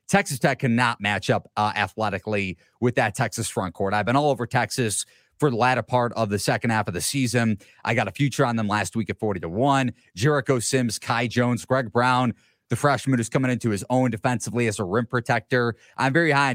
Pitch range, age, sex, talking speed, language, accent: 110-140 Hz, 30-49, male, 220 wpm, English, American